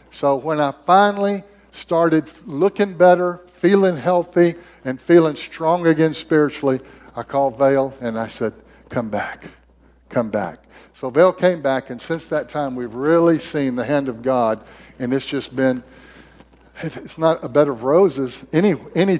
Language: English